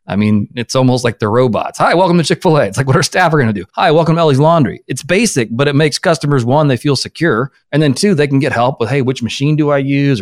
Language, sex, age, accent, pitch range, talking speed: English, male, 30-49, American, 115-140 Hz, 290 wpm